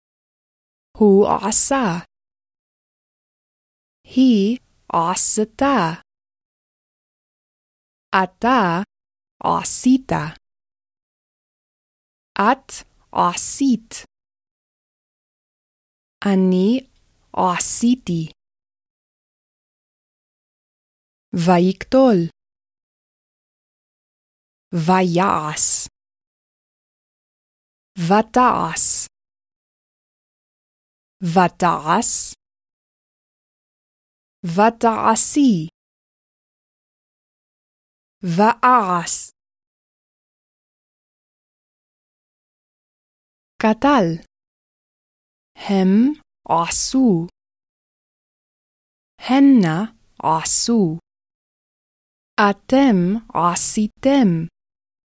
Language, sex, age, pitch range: Hebrew, female, 20-39, 165-235 Hz